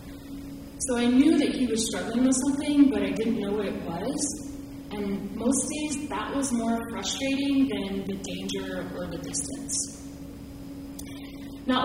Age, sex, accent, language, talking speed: 10-29, female, American, English, 150 wpm